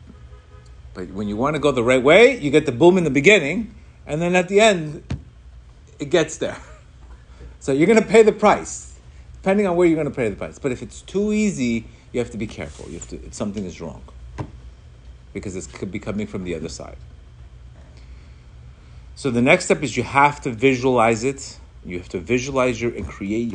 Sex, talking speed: male, 200 wpm